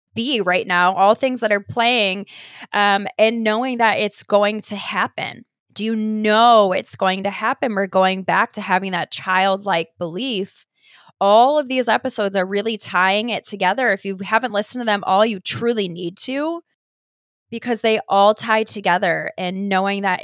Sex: female